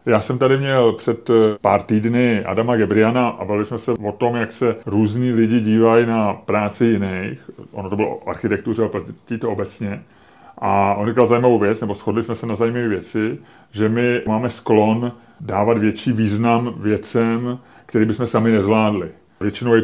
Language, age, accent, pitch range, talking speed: English, 30-49, Czech, 105-120 Hz, 170 wpm